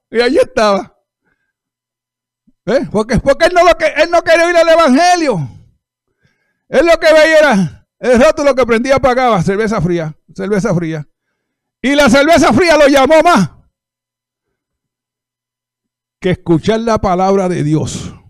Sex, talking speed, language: male, 145 wpm, Spanish